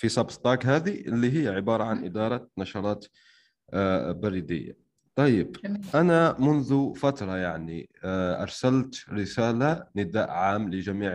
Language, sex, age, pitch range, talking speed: Arabic, male, 30-49, 95-125 Hz, 110 wpm